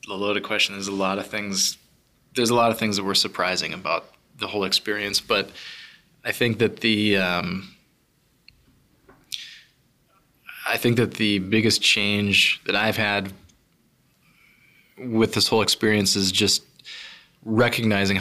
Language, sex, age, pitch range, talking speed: English, male, 20-39, 95-110 Hz, 140 wpm